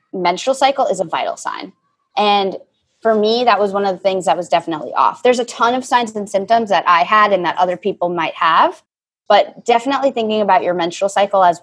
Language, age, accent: English, 20-39, American